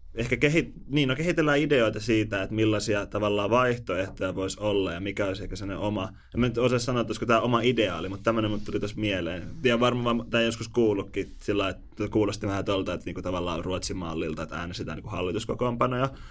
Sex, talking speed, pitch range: male, 195 wpm, 95-115 Hz